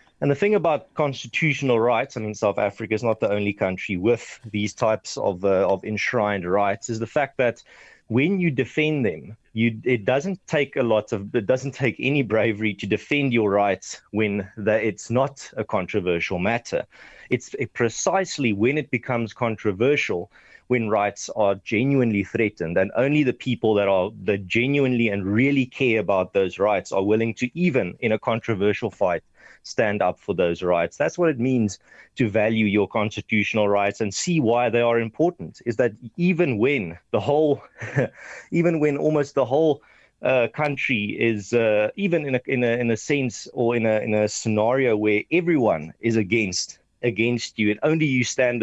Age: 30-49